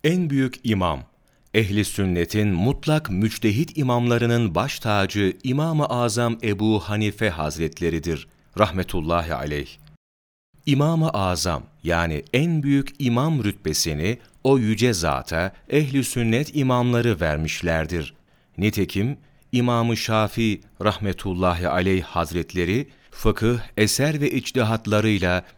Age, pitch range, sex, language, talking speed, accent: 40-59, 90-125 Hz, male, Turkish, 95 wpm, native